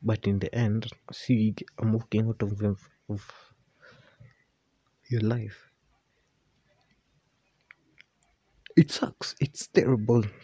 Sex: male